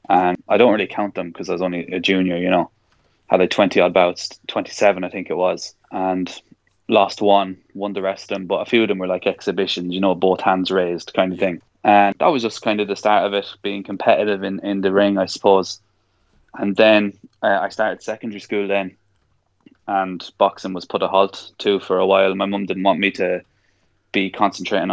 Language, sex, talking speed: English, male, 220 wpm